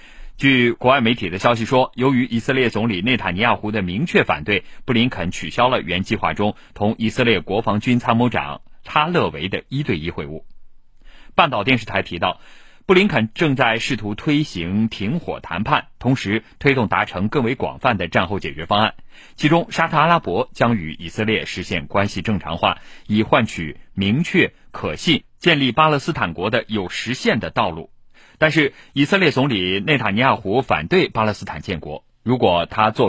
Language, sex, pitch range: Chinese, male, 100-135 Hz